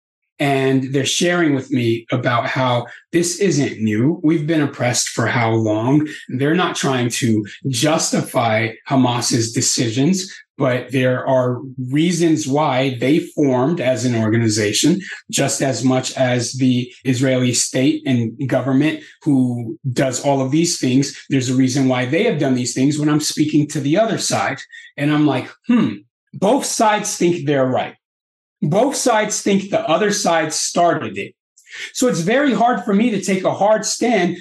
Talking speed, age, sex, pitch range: 160 wpm, 30-49, male, 130-220 Hz